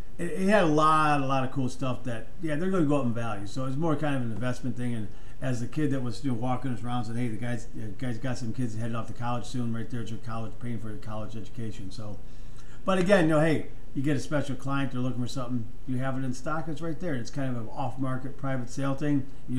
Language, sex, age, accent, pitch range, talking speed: English, male, 40-59, American, 120-140 Hz, 285 wpm